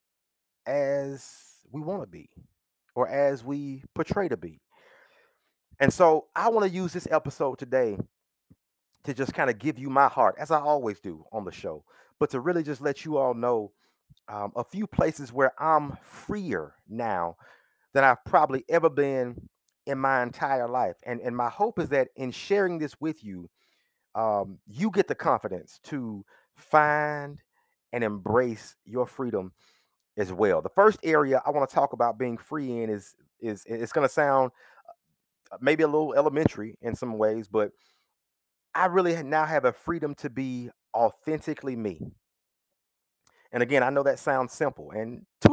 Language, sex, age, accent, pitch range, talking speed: English, male, 30-49, American, 120-160 Hz, 165 wpm